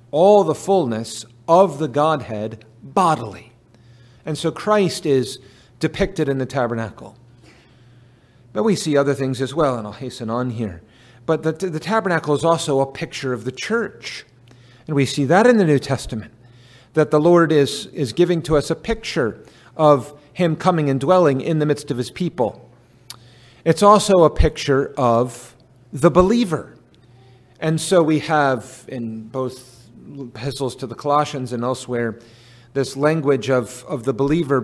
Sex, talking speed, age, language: male, 160 wpm, 40-59, English